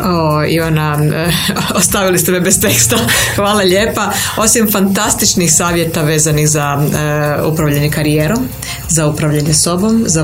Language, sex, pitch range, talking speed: Croatian, female, 155-175 Hz, 115 wpm